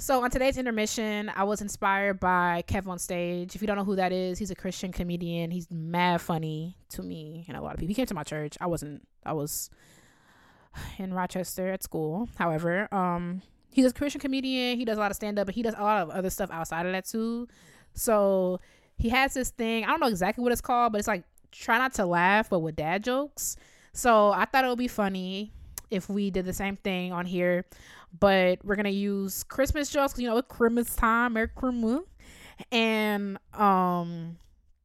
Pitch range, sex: 175-220 Hz, female